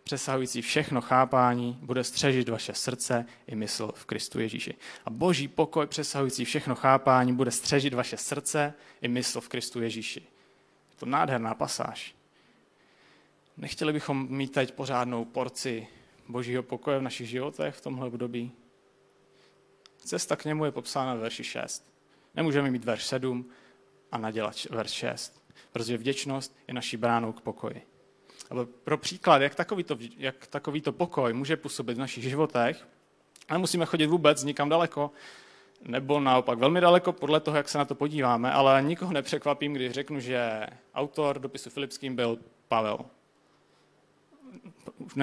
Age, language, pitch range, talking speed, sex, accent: 30-49, Czech, 120-145 Hz, 145 wpm, male, native